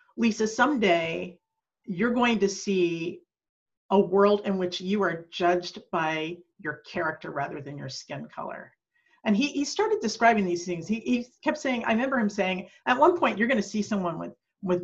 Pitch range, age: 180-255 Hz, 50-69